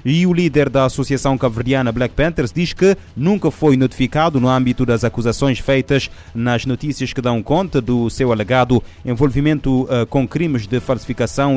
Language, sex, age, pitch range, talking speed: Portuguese, male, 30-49, 120-140 Hz, 160 wpm